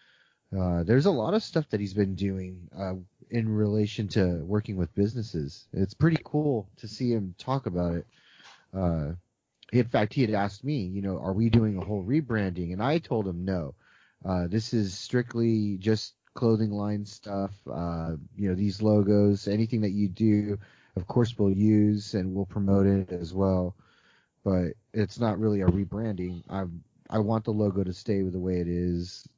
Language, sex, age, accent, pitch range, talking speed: English, male, 30-49, American, 90-115 Hz, 180 wpm